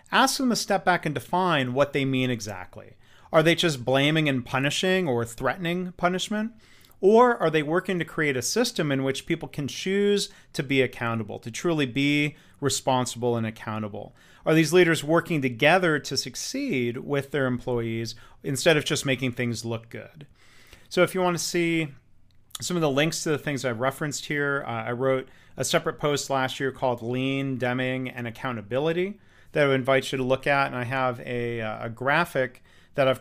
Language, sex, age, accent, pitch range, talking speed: English, male, 40-59, American, 120-145 Hz, 185 wpm